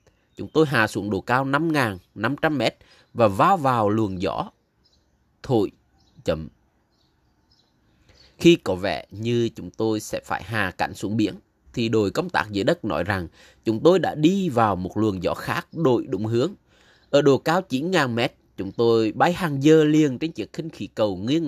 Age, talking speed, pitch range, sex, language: 20-39, 175 wpm, 105-155 Hz, male, Vietnamese